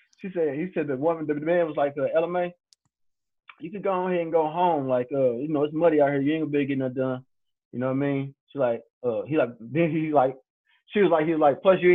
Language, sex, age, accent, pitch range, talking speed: English, male, 20-39, American, 160-240 Hz, 275 wpm